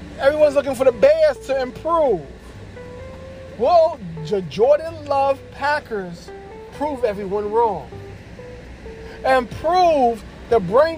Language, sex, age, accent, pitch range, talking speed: English, male, 40-59, American, 190-285 Hz, 105 wpm